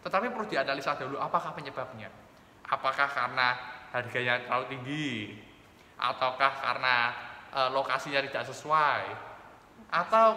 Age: 20-39